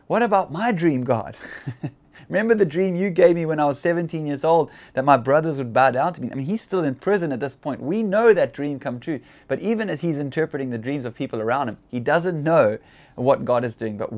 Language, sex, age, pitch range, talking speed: English, male, 20-39, 120-155 Hz, 250 wpm